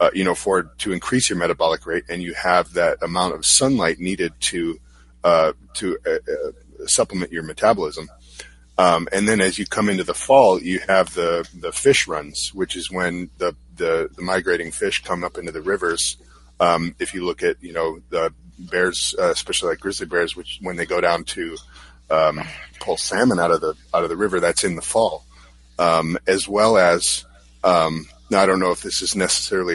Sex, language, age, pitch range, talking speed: male, English, 30-49, 80-100 Hz, 200 wpm